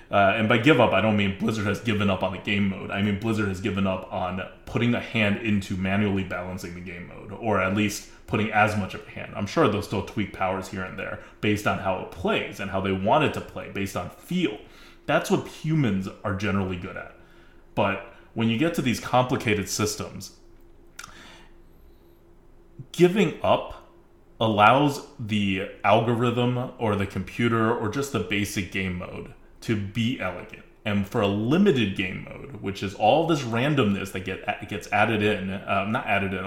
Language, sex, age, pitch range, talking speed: English, male, 20-39, 95-115 Hz, 190 wpm